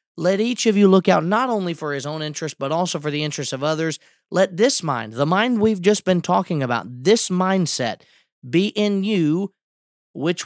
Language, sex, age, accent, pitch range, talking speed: English, male, 30-49, American, 140-190 Hz, 200 wpm